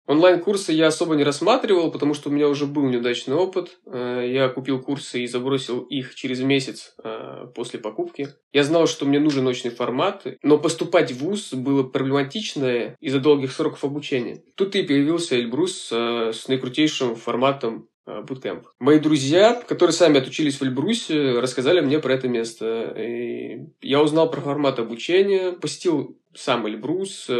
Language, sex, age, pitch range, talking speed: Russian, male, 20-39, 130-155 Hz, 150 wpm